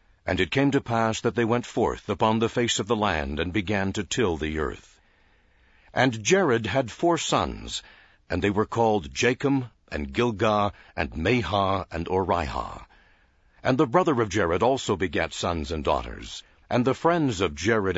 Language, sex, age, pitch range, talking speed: English, male, 60-79, 95-130 Hz, 175 wpm